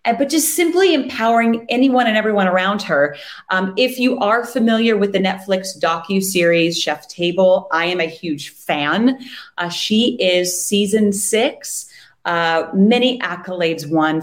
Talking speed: 145 wpm